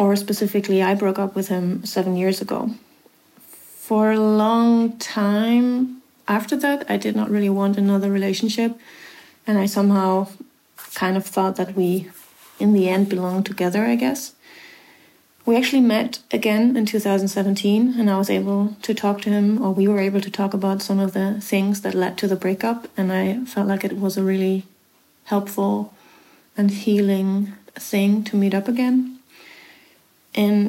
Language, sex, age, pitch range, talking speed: English, female, 30-49, 195-225 Hz, 165 wpm